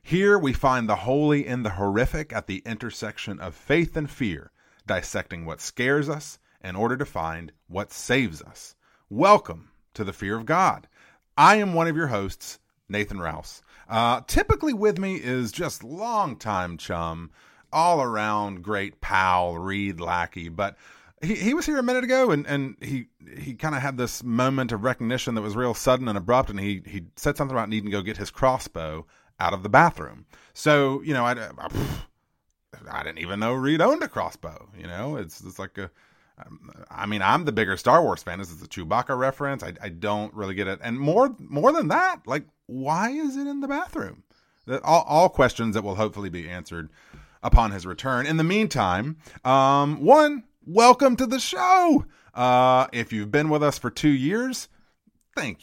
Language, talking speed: English, 190 wpm